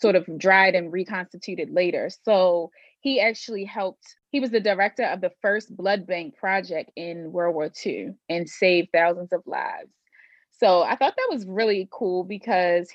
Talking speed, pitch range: 170 wpm, 170-210 Hz